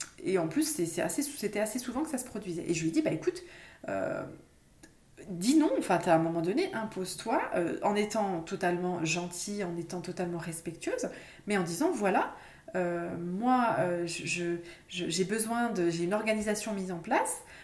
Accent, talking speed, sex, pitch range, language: French, 195 wpm, female, 175-245 Hz, French